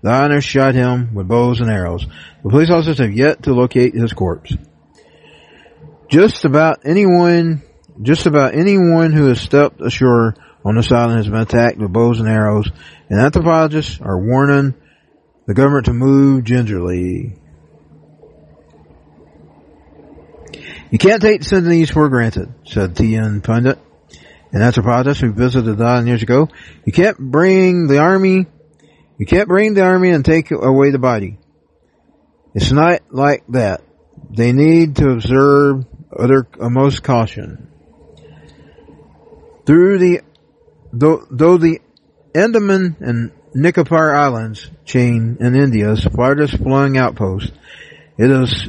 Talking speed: 130 wpm